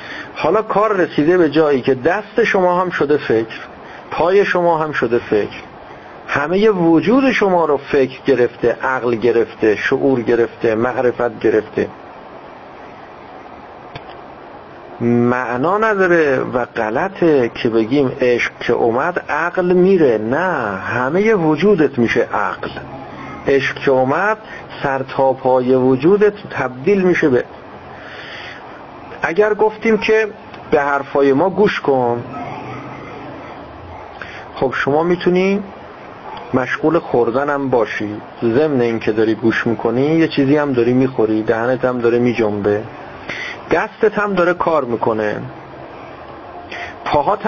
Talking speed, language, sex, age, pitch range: 115 wpm, Persian, male, 50-69, 120-180 Hz